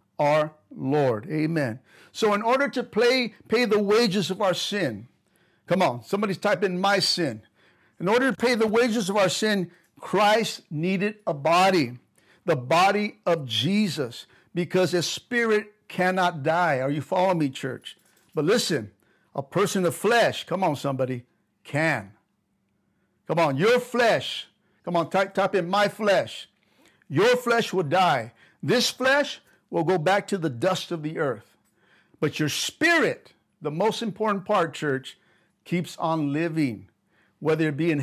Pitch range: 160-215 Hz